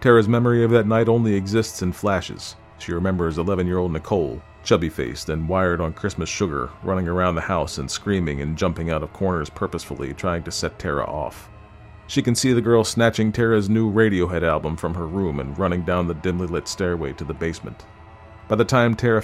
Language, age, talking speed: English, 40-59, 195 wpm